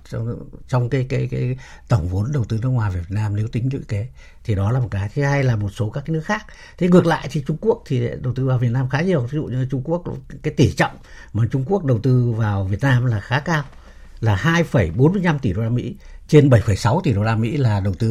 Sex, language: male, Vietnamese